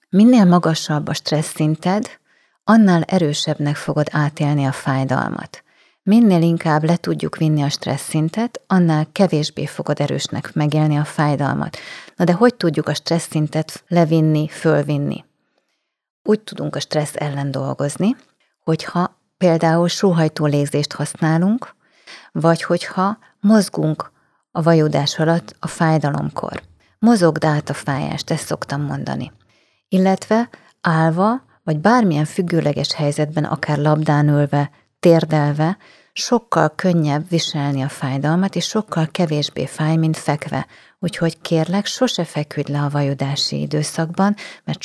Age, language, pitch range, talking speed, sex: 30-49, Hungarian, 150-180 Hz, 120 wpm, female